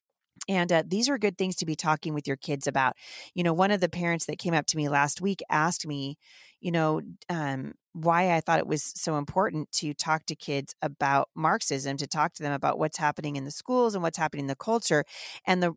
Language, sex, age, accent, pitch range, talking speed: English, female, 40-59, American, 150-190 Hz, 230 wpm